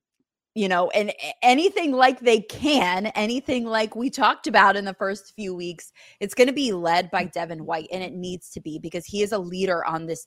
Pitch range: 165-200 Hz